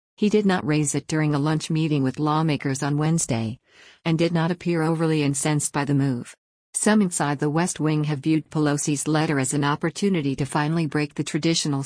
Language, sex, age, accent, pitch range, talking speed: English, female, 50-69, American, 145-160 Hz, 195 wpm